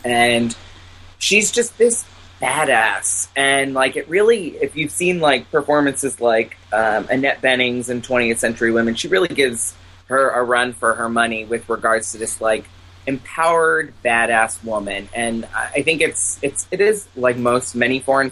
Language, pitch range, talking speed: English, 110-130 Hz, 165 wpm